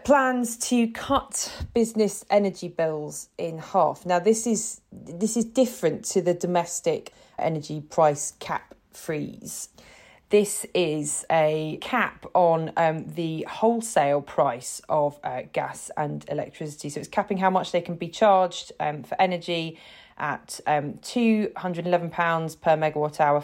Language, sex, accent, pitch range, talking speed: English, female, British, 155-190 Hz, 150 wpm